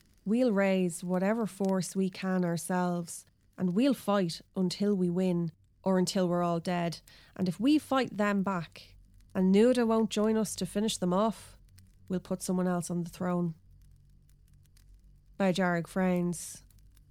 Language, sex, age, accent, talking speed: English, female, 20-39, Irish, 145 wpm